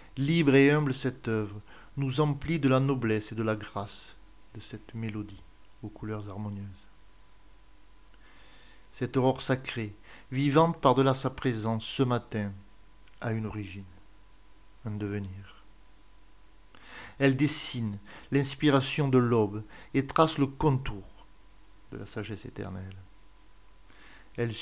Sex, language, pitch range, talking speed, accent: male, French, 100-130 Hz, 115 wpm, French